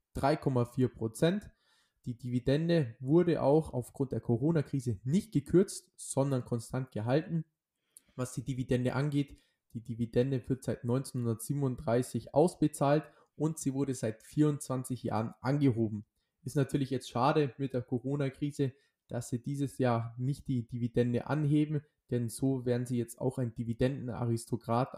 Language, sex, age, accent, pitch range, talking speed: German, male, 20-39, German, 120-145 Hz, 130 wpm